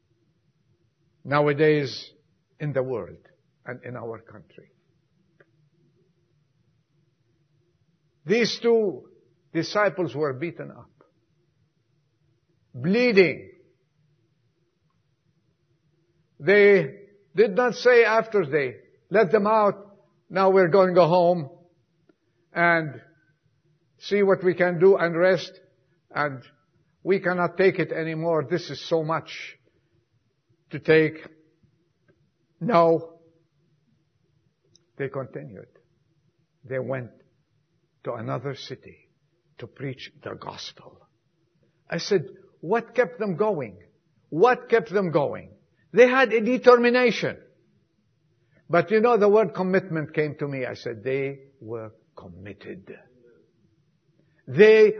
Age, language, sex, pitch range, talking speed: 50-69, English, male, 145-190 Hz, 100 wpm